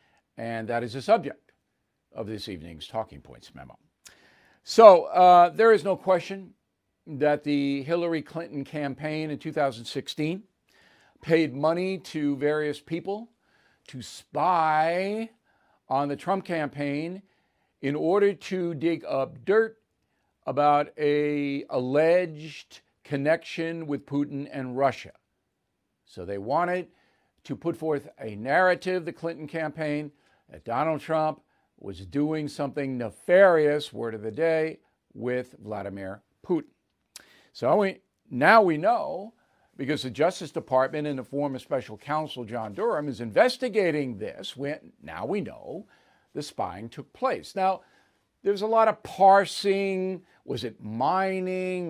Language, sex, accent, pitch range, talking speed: English, male, American, 140-185 Hz, 125 wpm